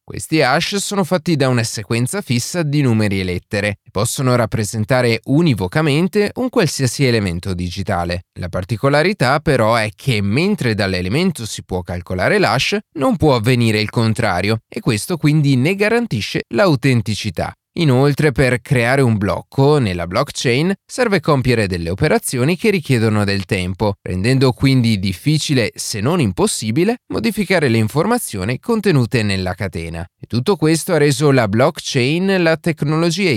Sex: male